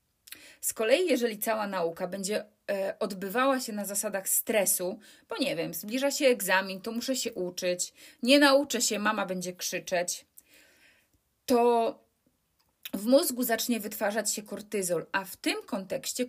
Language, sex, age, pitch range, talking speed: Polish, female, 30-49, 200-275 Hz, 140 wpm